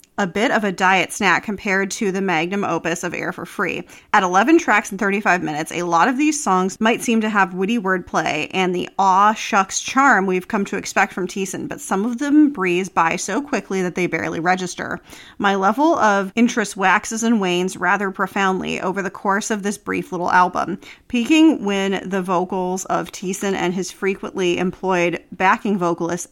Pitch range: 180-215 Hz